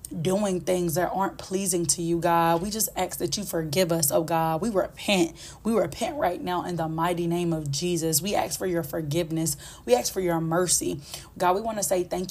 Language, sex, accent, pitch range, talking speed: English, female, American, 165-195 Hz, 220 wpm